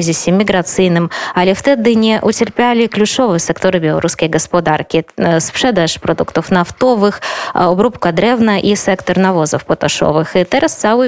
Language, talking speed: Polish, 115 wpm